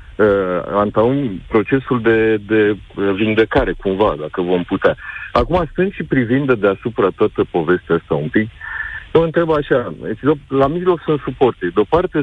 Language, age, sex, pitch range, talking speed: Romanian, 40-59, male, 105-150 Hz, 145 wpm